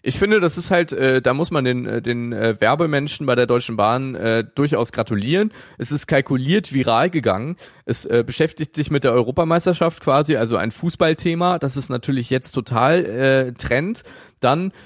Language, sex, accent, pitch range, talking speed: German, male, German, 120-160 Hz, 180 wpm